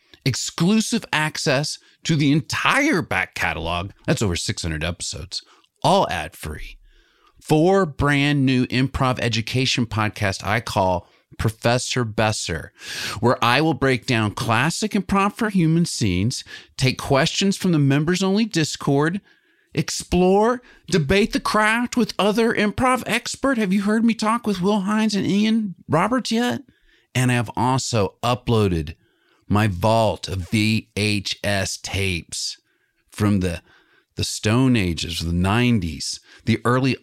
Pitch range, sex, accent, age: 110-185 Hz, male, American, 40-59